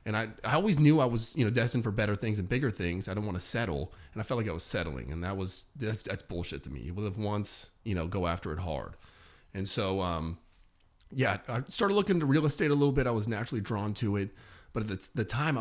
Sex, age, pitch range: male, 30-49, 95-120 Hz